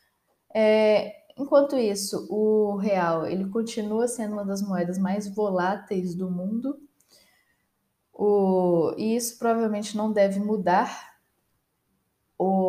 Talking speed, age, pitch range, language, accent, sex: 110 wpm, 10-29, 185-230 Hz, Portuguese, Brazilian, female